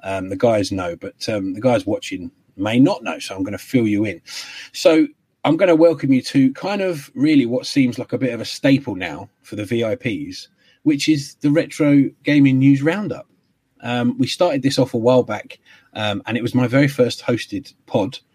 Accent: British